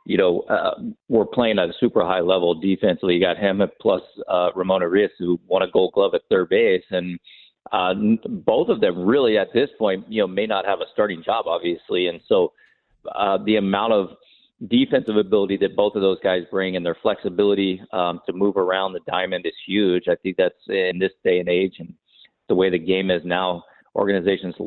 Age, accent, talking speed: 40-59, American, 205 wpm